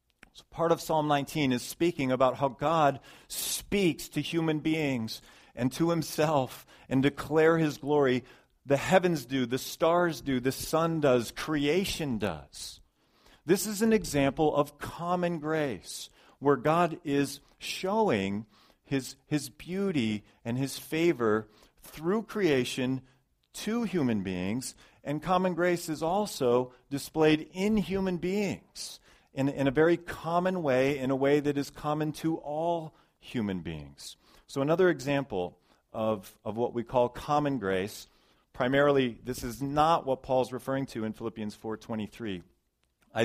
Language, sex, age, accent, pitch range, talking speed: English, male, 40-59, American, 115-155 Hz, 135 wpm